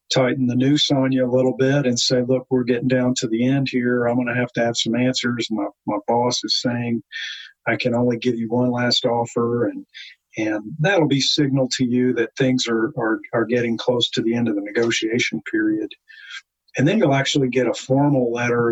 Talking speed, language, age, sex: 220 wpm, English, 50-69, male